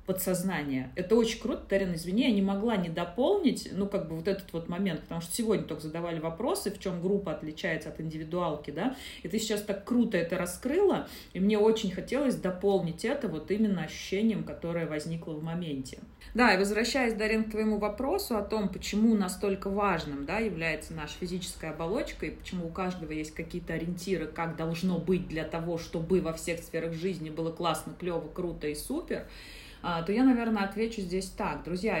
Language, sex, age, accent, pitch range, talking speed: Russian, female, 30-49, native, 170-210 Hz, 185 wpm